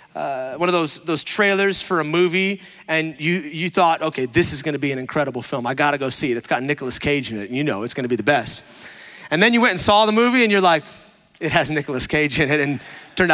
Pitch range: 150-195 Hz